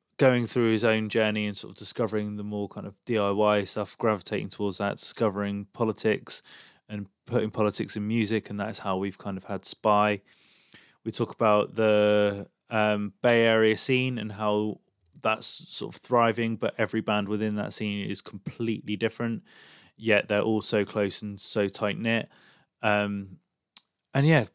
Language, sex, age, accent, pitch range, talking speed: English, male, 20-39, British, 100-115 Hz, 165 wpm